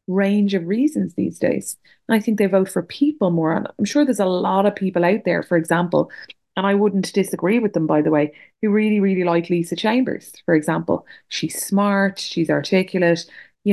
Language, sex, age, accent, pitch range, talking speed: English, female, 20-39, Irish, 160-205 Hz, 205 wpm